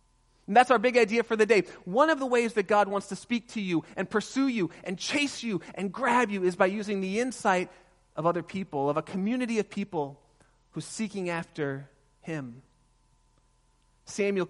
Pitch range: 150-190 Hz